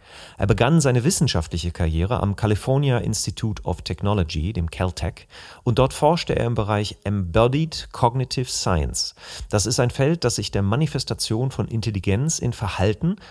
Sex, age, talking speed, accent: male, 40-59, 150 wpm, German